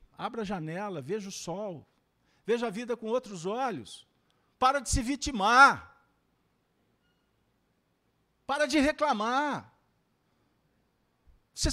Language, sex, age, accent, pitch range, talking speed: Portuguese, male, 50-69, Brazilian, 155-245 Hz, 100 wpm